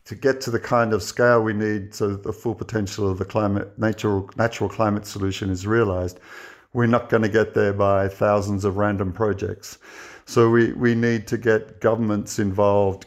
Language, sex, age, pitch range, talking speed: English, male, 50-69, 95-110 Hz, 195 wpm